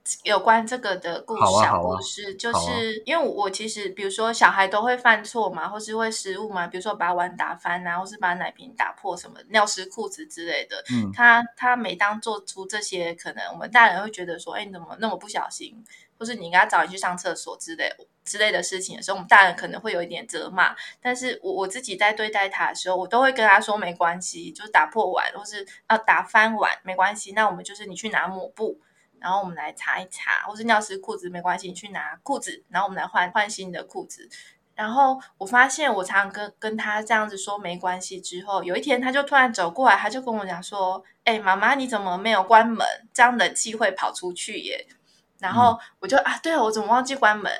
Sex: female